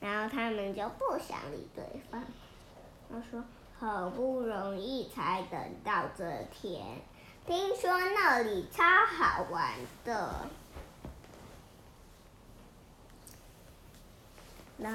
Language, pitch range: Chinese, 225-270 Hz